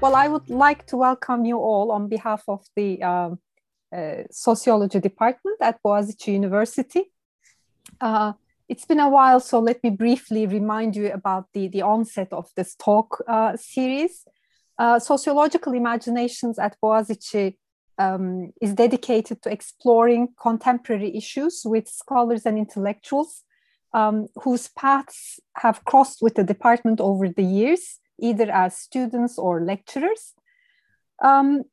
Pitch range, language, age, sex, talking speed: 210-255 Hz, English, 30-49, female, 135 wpm